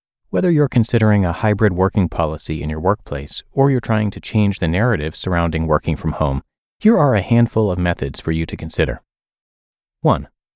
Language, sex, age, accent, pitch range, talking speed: English, male, 30-49, American, 85-115 Hz, 180 wpm